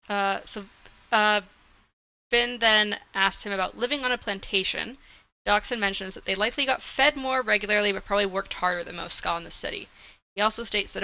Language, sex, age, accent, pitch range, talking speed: English, female, 10-29, American, 190-230 Hz, 190 wpm